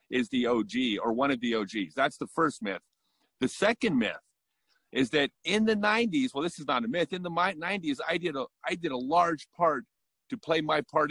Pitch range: 130-180 Hz